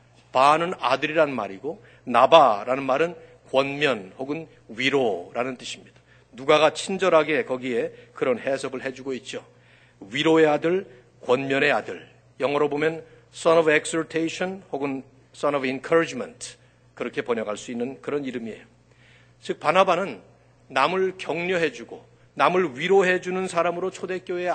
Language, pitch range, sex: Korean, 130-180 Hz, male